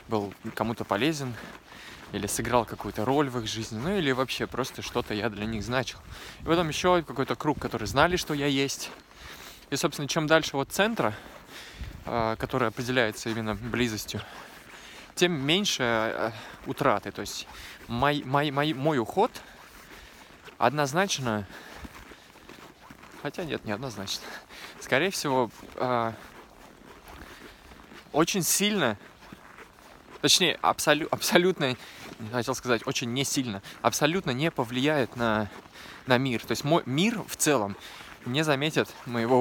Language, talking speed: Russian, 125 wpm